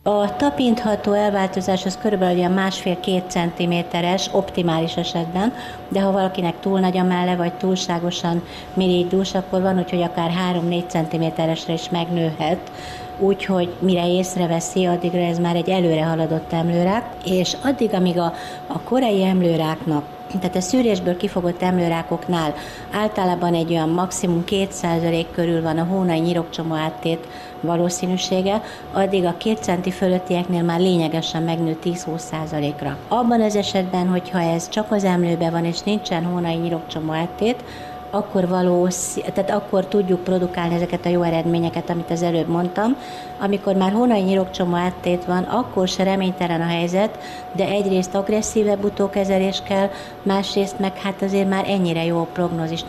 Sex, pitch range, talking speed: female, 170-195 Hz, 140 wpm